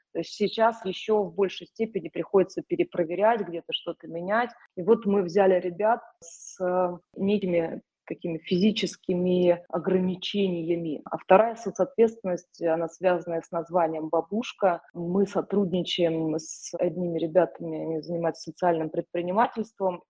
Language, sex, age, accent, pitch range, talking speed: Russian, female, 20-39, native, 175-210 Hz, 105 wpm